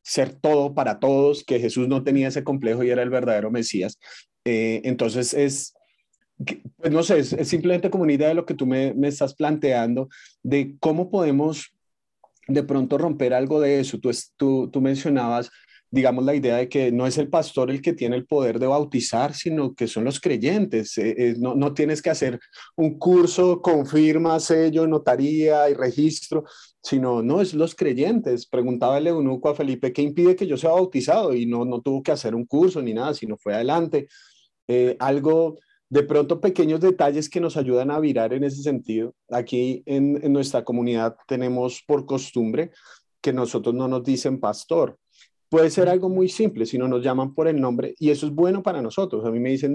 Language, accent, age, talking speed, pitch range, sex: Spanish, Colombian, 30-49, 195 wpm, 125-160 Hz, male